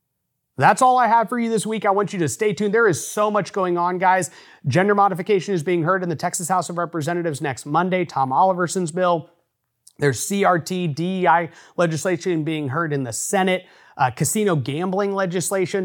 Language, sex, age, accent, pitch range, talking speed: English, male, 30-49, American, 160-210 Hz, 190 wpm